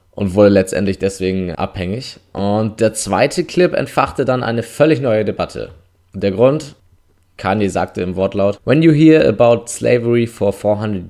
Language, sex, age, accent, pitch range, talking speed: German, male, 20-39, German, 100-120 Hz, 150 wpm